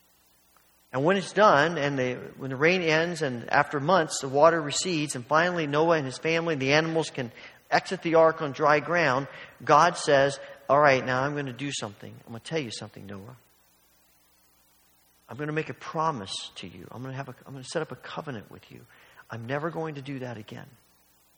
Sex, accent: male, American